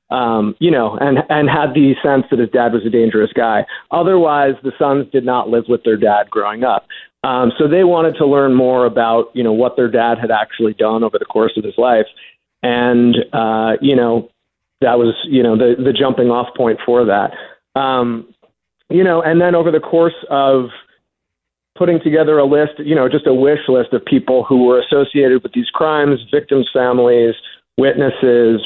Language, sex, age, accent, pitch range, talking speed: English, male, 40-59, American, 120-140 Hz, 195 wpm